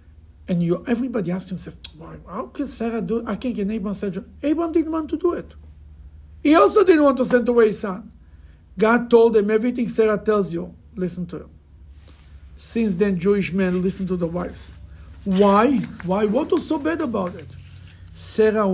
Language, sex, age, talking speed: English, male, 60-79, 175 wpm